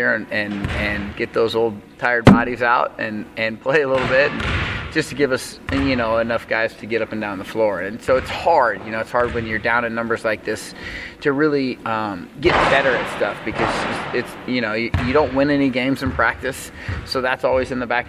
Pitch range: 110-130 Hz